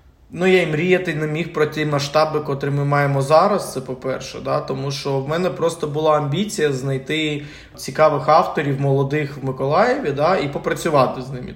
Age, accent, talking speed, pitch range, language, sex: 20-39, native, 175 wpm, 145-180 Hz, Ukrainian, male